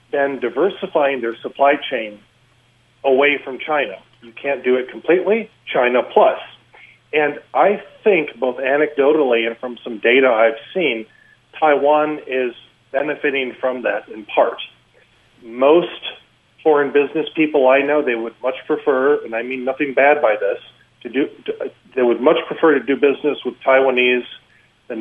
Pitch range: 120-155 Hz